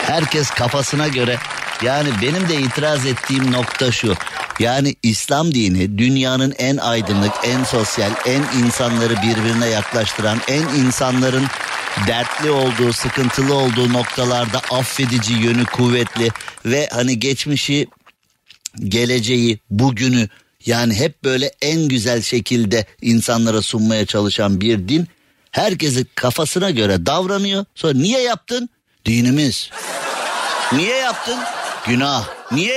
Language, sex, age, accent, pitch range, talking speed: Turkish, male, 50-69, native, 115-135 Hz, 110 wpm